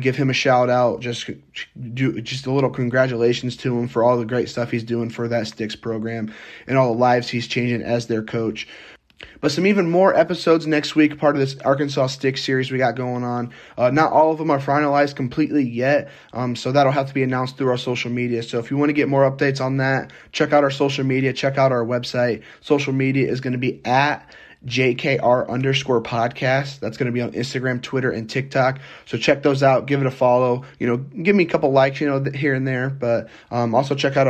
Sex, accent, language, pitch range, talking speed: male, American, English, 115-135 Hz, 235 wpm